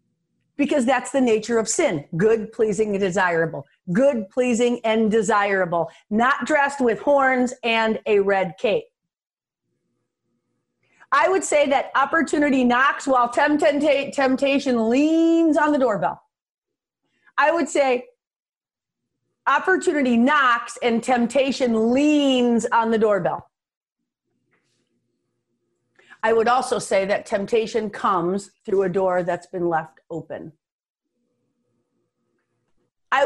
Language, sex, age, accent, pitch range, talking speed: English, female, 40-59, American, 225-285 Hz, 110 wpm